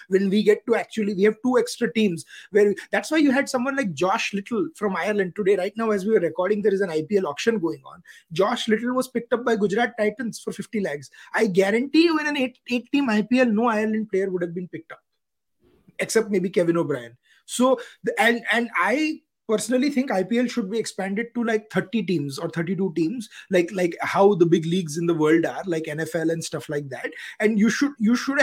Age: 20-39